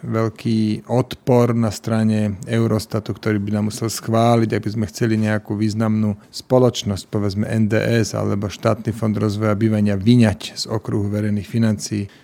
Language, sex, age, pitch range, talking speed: Slovak, male, 40-59, 105-120 Hz, 140 wpm